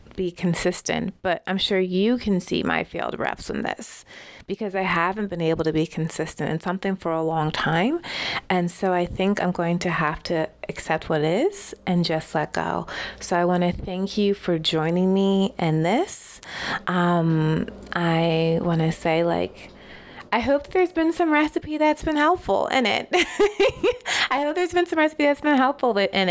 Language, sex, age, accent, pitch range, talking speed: English, female, 30-49, American, 170-225 Hz, 185 wpm